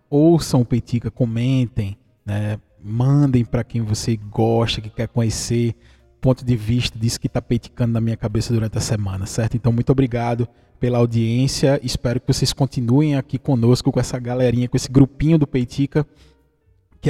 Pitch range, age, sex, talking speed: 115-140 Hz, 20-39, male, 165 wpm